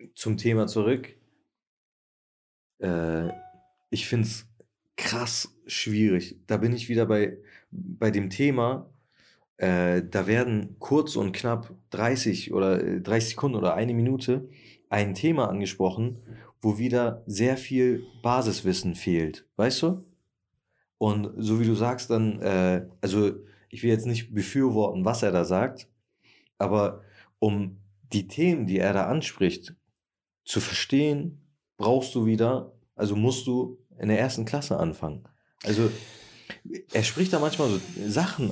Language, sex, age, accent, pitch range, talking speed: German, male, 40-59, German, 100-135 Hz, 135 wpm